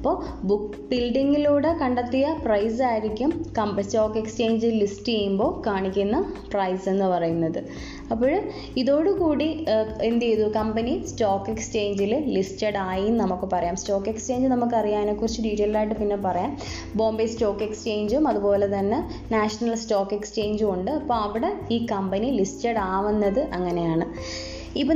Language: Malayalam